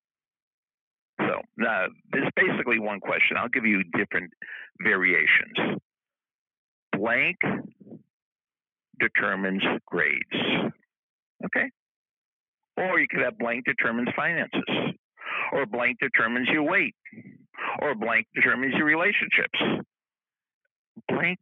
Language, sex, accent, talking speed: English, male, American, 90 wpm